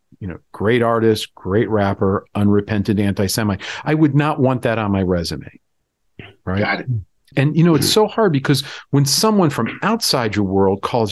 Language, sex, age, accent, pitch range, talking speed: English, male, 40-59, American, 105-145 Hz, 165 wpm